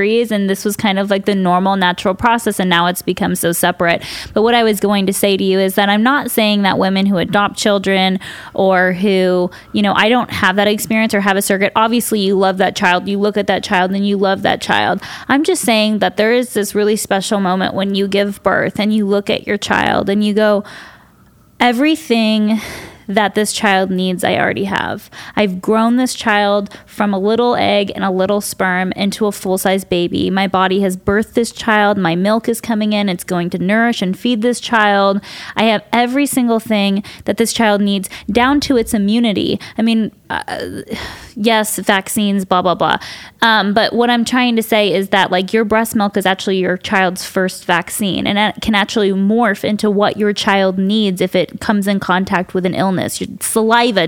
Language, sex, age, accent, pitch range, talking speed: English, female, 10-29, American, 195-225 Hz, 210 wpm